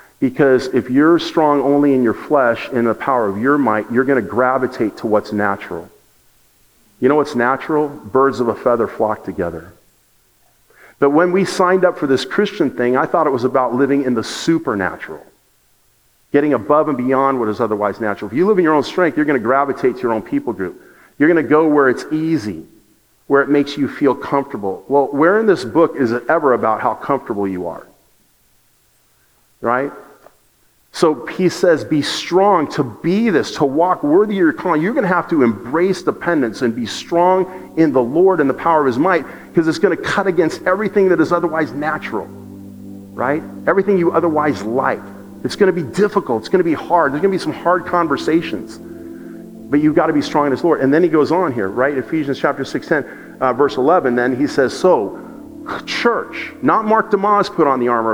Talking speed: 205 wpm